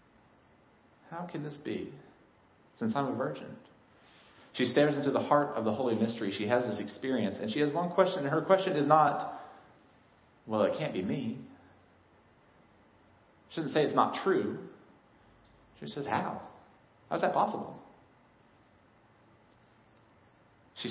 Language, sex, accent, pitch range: English, male, American, 105-160 Hz